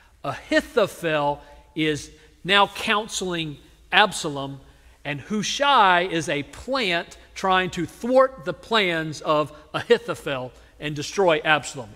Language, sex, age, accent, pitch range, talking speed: English, male, 50-69, American, 145-195 Hz, 100 wpm